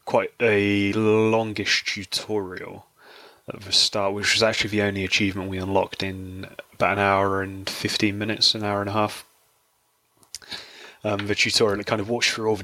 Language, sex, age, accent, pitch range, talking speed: English, male, 20-39, British, 95-105 Hz, 170 wpm